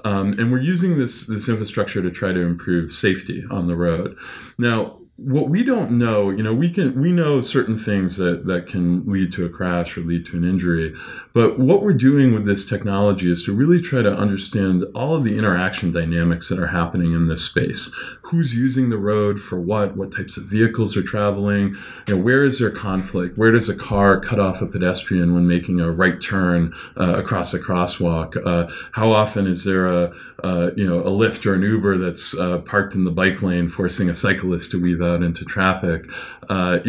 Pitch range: 90-115 Hz